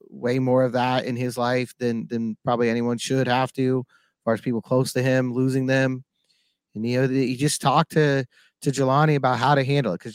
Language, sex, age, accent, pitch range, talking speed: English, male, 30-49, American, 130-150 Hz, 225 wpm